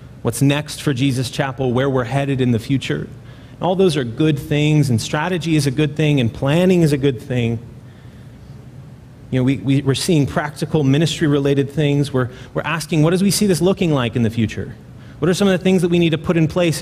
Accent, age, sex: American, 30-49, male